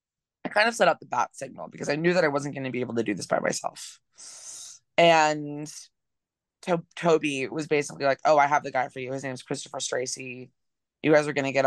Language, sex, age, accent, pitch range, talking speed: English, female, 20-39, American, 130-165 Hz, 230 wpm